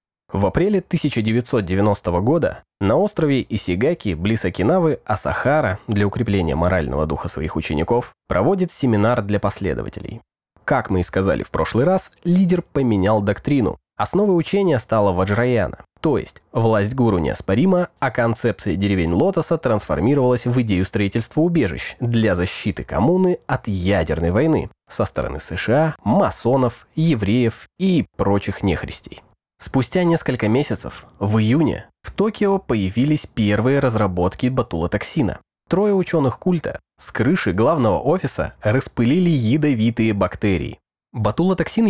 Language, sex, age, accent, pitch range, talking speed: Russian, male, 20-39, native, 100-150 Hz, 120 wpm